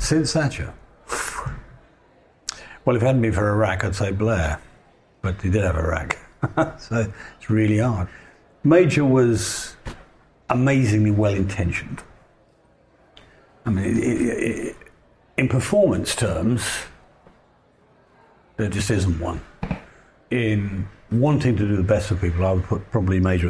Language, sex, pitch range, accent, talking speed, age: English, male, 90-115 Hz, British, 135 wpm, 60-79